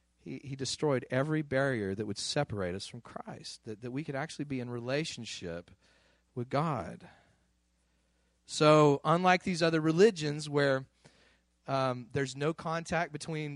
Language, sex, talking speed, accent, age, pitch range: English, male, 135 wpm, American, 40-59, 95-155 Hz